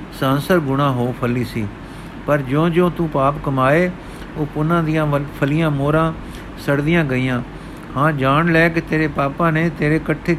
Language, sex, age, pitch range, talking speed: Punjabi, male, 50-69, 135-160 Hz, 150 wpm